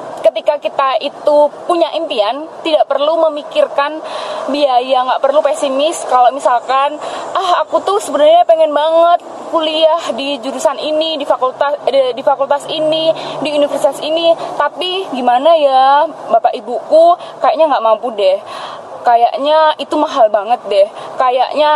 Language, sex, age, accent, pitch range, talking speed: Indonesian, female, 20-39, native, 260-320 Hz, 130 wpm